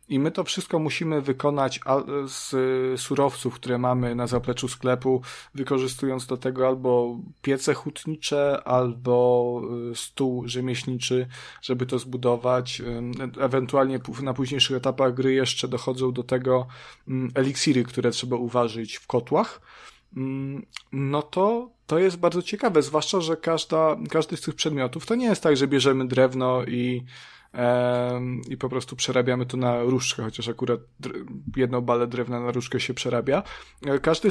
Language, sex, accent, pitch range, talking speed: Polish, male, native, 125-145 Hz, 135 wpm